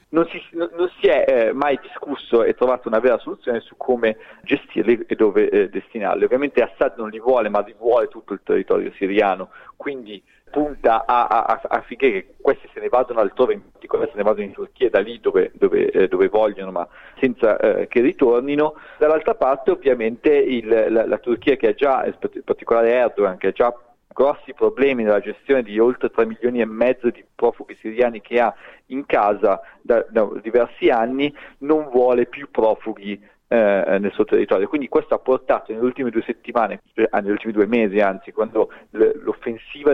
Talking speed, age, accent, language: 180 wpm, 40-59, native, Italian